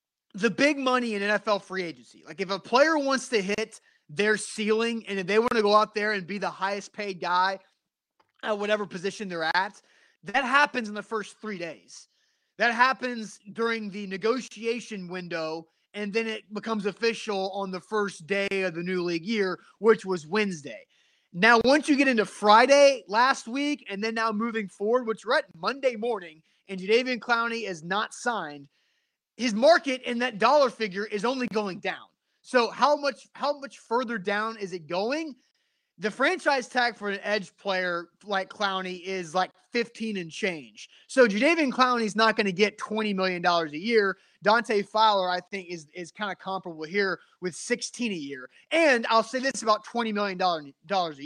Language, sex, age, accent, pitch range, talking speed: English, male, 30-49, American, 190-240 Hz, 185 wpm